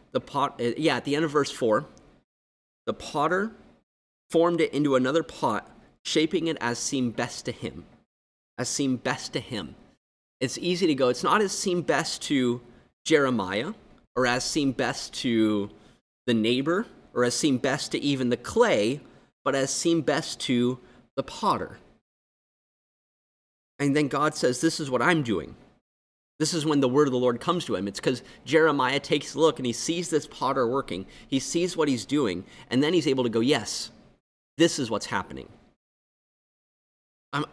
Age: 30-49